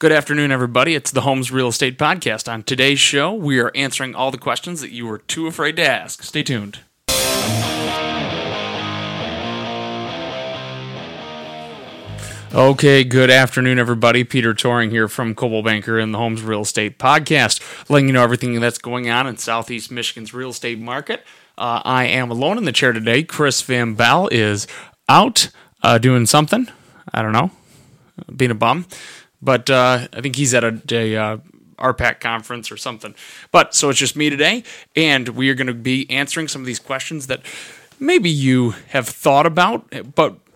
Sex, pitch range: male, 115-145 Hz